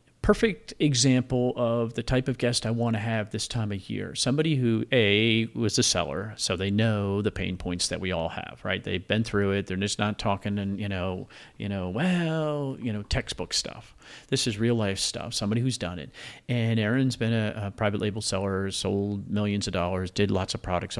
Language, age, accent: English, 40-59, American